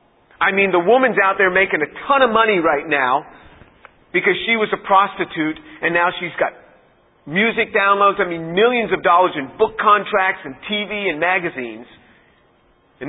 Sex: male